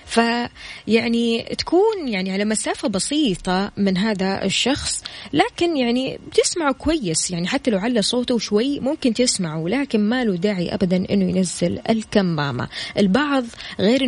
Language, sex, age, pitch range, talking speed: Arabic, female, 20-39, 185-235 Hz, 135 wpm